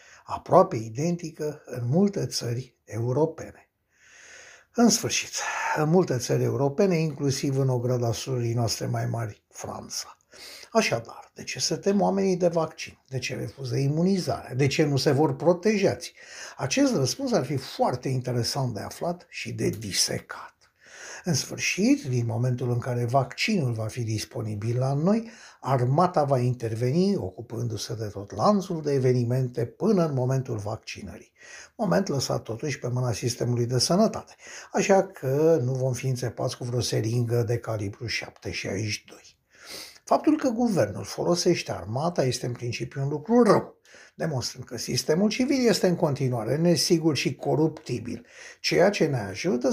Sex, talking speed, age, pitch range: male, 145 wpm, 60-79, 120-170 Hz